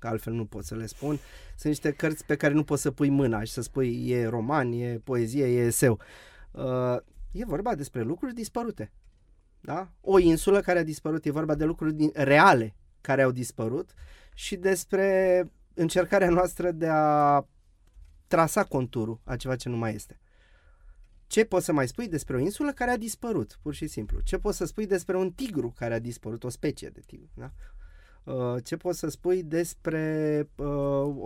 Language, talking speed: Romanian, 180 wpm